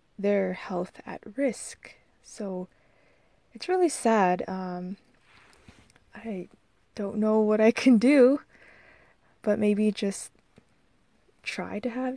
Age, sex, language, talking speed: 20-39, female, English, 110 wpm